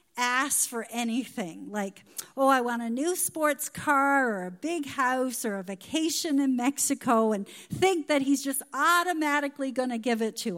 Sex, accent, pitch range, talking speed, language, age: female, American, 200-275 Hz, 175 wpm, English, 50-69